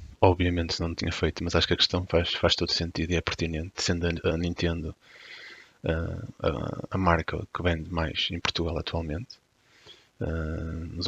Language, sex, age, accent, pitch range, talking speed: Portuguese, male, 30-49, Portuguese, 85-95 Hz, 155 wpm